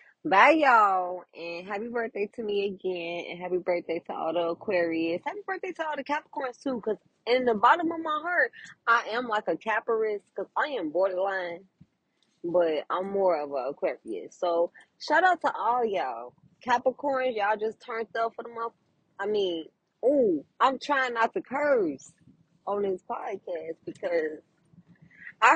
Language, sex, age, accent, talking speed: English, female, 20-39, American, 165 wpm